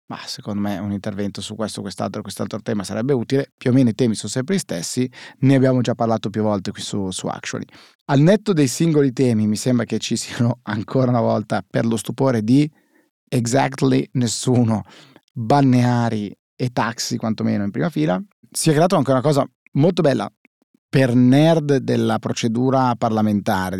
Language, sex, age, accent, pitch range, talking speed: Italian, male, 30-49, native, 110-135 Hz, 175 wpm